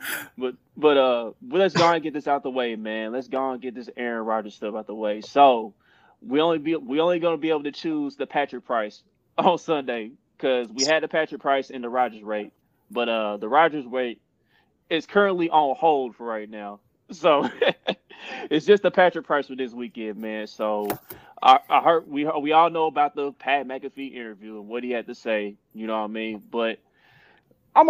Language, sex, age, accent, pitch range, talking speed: English, male, 20-39, American, 110-150 Hz, 210 wpm